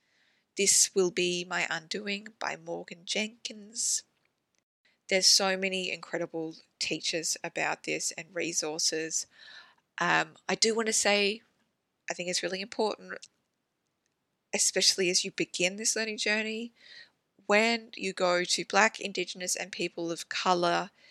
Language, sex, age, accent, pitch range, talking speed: English, female, 20-39, Australian, 175-210 Hz, 130 wpm